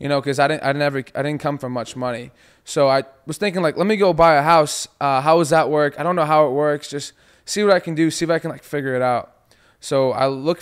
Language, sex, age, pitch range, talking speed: English, male, 20-39, 130-150 Hz, 295 wpm